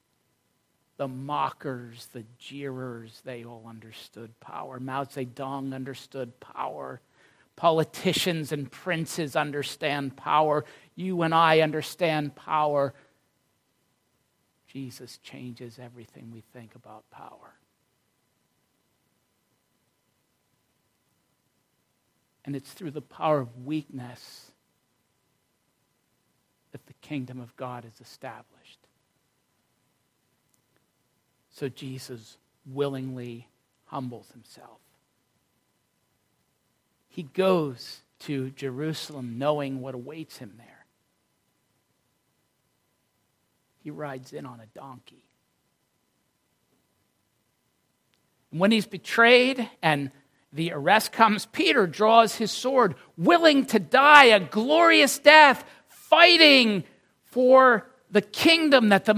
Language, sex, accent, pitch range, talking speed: English, male, American, 130-205 Hz, 85 wpm